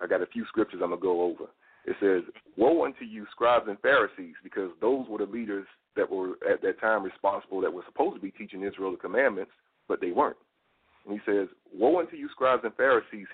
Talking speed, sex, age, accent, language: 220 wpm, male, 40-59, American, English